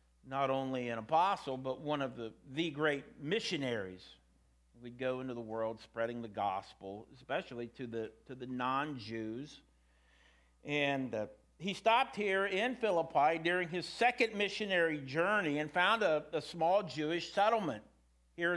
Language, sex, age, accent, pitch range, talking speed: English, male, 50-69, American, 110-180 Hz, 145 wpm